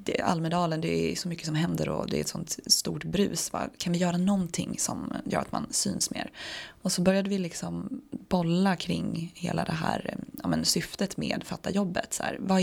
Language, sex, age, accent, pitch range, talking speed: English, female, 20-39, Swedish, 170-200 Hz, 215 wpm